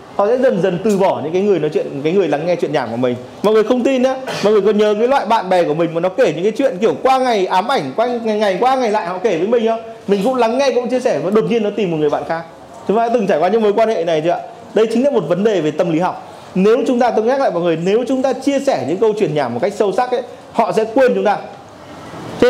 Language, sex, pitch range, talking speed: Vietnamese, male, 170-245 Hz, 330 wpm